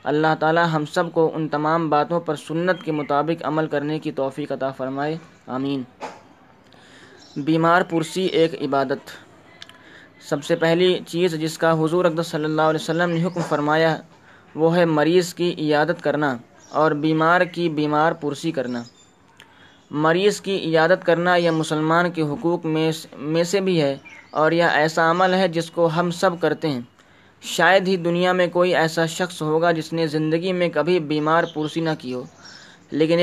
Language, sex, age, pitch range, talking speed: Urdu, male, 20-39, 155-175 Hz, 165 wpm